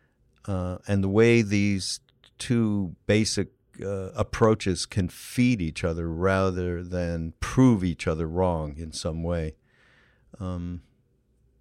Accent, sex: American, male